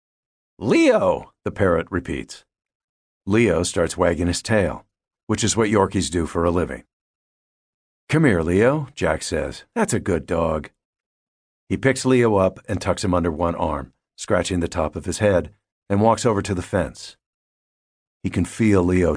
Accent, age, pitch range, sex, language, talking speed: American, 50-69, 85-115 Hz, male, English, 165 wpm